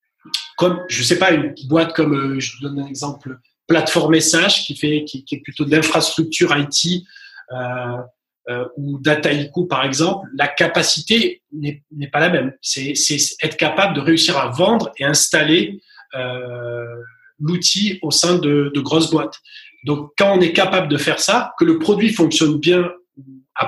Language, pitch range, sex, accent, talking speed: French, 145-180 Hz, male, French, 170 wpm